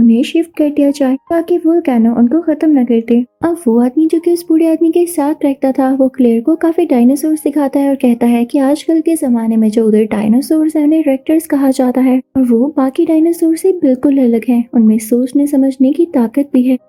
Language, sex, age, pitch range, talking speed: Hindi, female, 20-39, 245-315 Hz, 180 wpm